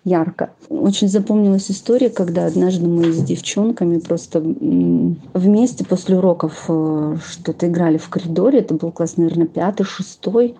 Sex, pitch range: female, 180-220 Hz